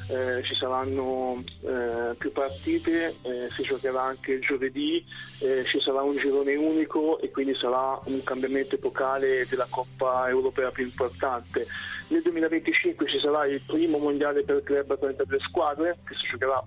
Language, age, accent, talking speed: Italian, 30-49, native, 160 wpm